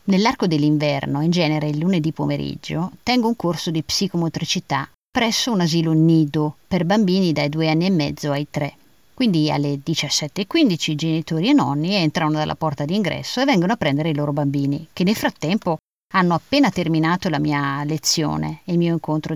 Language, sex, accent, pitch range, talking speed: Italian, female, native, 150-195 Hz, 175 wpm